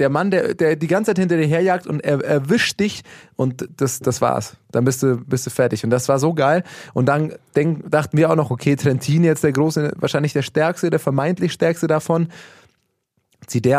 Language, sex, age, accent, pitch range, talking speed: German, male, 20-39, German, 130-165 Hz, 220 wpm